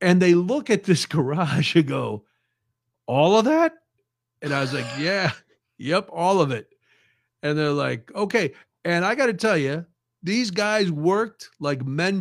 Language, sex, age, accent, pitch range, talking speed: English, male, 50-69, American, 130-180 Hz, 170 wpm